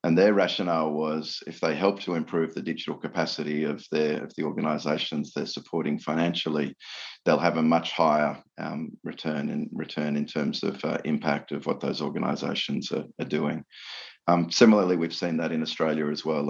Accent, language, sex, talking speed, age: Australian, English, male, 180 wpm, 40-59